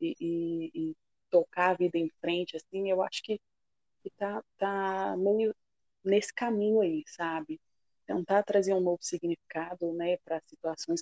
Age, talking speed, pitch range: 20-39, 145 wpm, 170-205 Hz